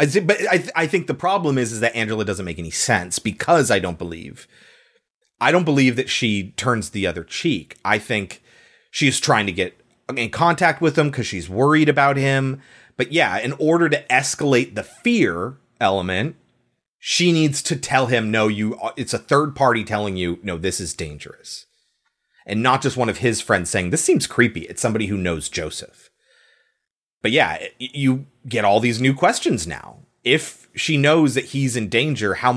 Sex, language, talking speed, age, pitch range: male, English, 185 wpm, 30-49, 110-165 Hz